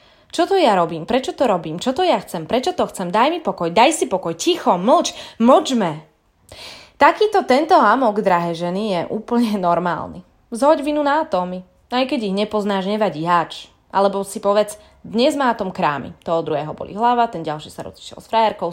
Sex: female